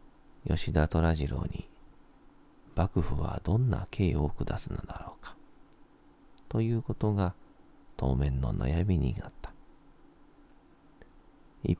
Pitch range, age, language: 75-95 Hz, 40-59, Japanese